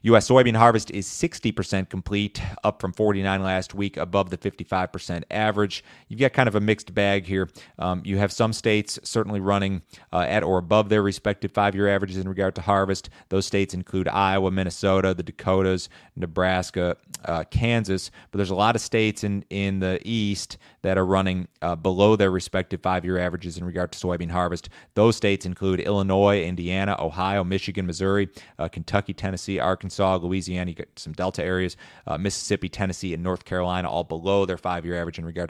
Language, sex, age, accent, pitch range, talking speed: English, male, 30-49, American, 90-100 Hz, 185 wpm